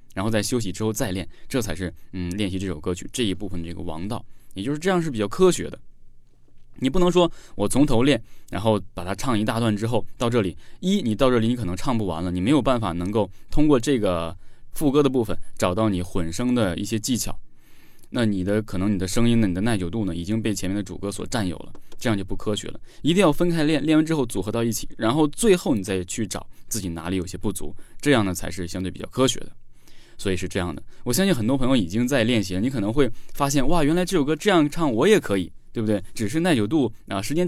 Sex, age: male, 20-39